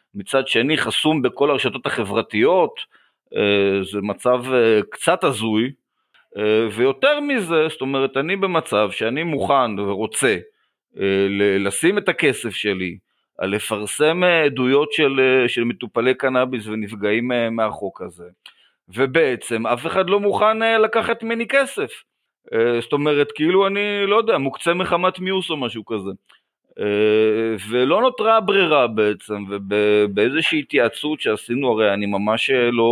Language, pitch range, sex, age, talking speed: Hebrew, 100-140 Hz, male, 30-49, 115 wpm